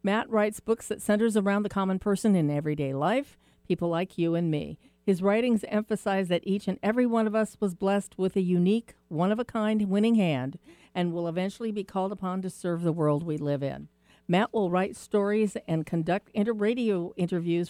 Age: 50-69